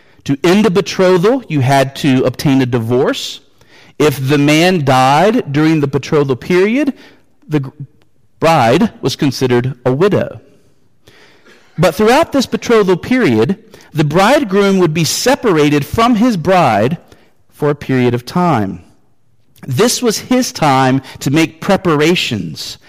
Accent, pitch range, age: American, 130-190 Hz, 40-59